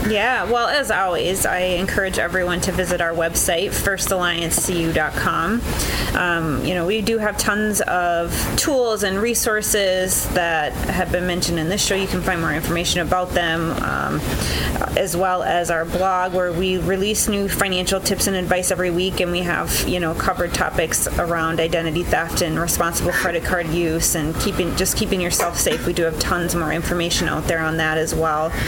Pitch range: 170-200 Hz